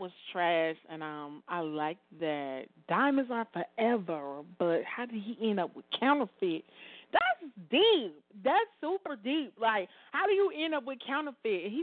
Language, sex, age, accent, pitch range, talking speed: English, female, 30-49, American, 185-270 Hz, 160 wpm